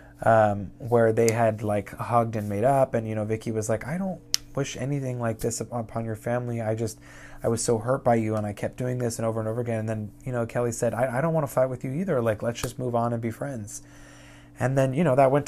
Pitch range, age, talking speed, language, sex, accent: 105-130 Hz, 20-39, 275 wpm, English, male, American